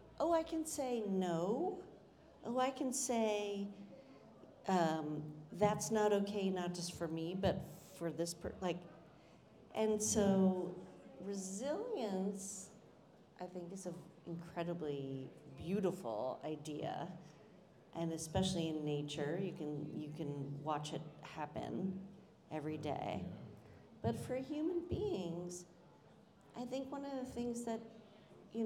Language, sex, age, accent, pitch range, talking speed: English, female, 40-59, American, 160-210 Hz, 115 wpm